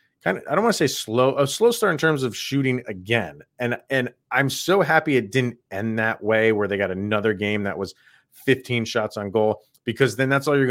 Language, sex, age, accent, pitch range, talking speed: English, male, 30-49, American, 110-140 Hz, 235 wpm